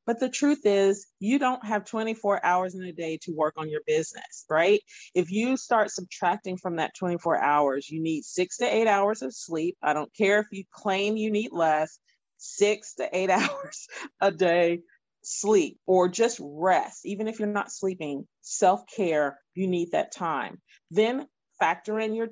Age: 40-59